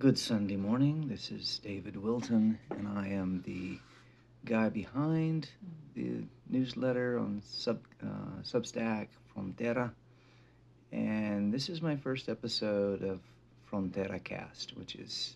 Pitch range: 95-120 Hz